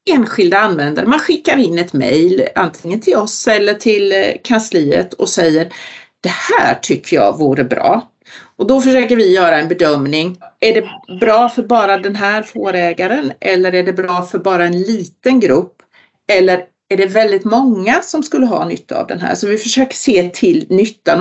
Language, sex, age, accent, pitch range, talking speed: Swedish, female, 40-59, native, 175-250 Hz, 180 wpm